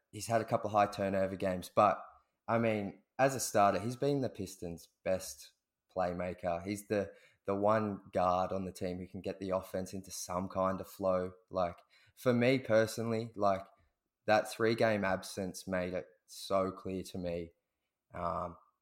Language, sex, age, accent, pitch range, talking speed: English, male, 20-39, Australian, 95-105 Hz, 170 wpm